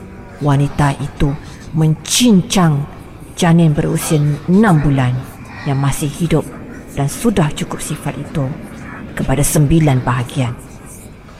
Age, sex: 40-59, female